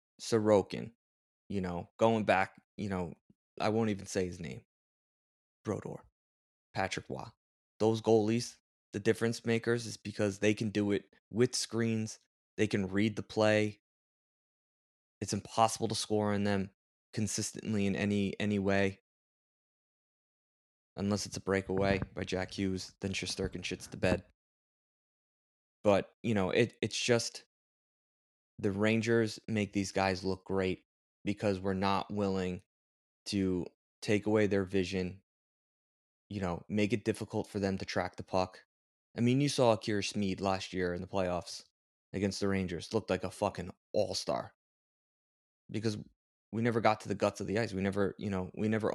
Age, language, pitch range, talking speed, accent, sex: 20-39, English, 90-110 Hz, 155 wpm, American, male